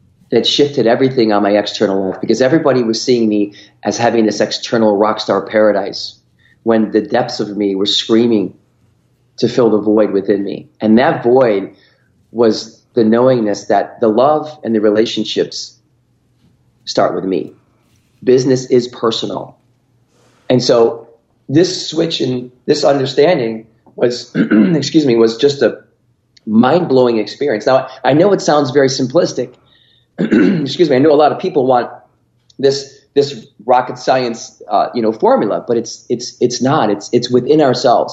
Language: English